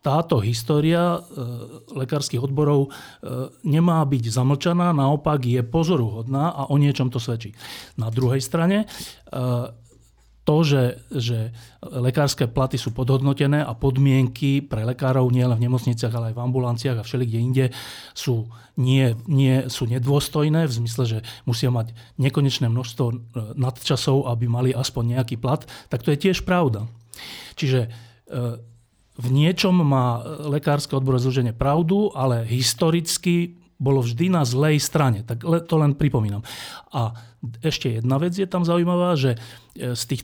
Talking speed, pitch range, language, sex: 145 wpm, 120-150 Hz, Slovak, male